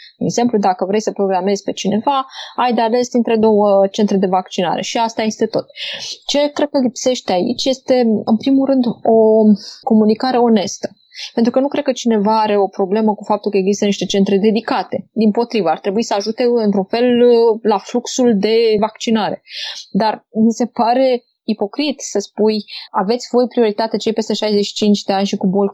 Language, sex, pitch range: Romanian, female, 200-235 Hz